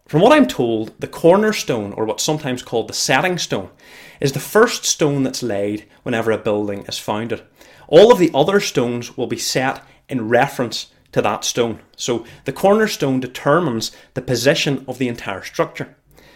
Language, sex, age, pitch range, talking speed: English, male, 30-49, 120-150 Hz, 170 wpm